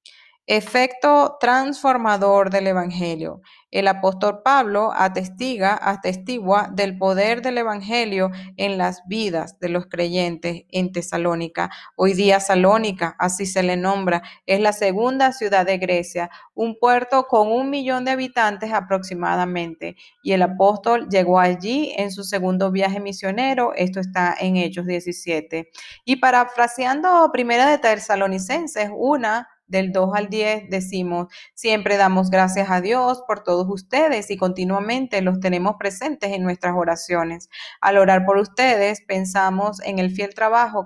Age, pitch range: 30-49, 185-220 Hz